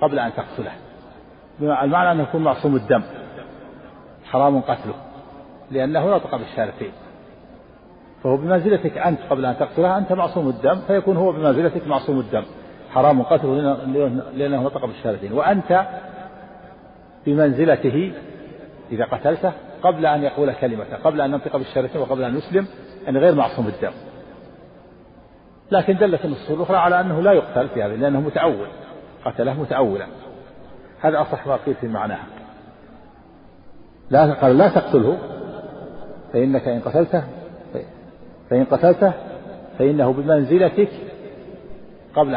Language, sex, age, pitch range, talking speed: Arabic, male, 50-69, 135-180 Hz, 120 wpm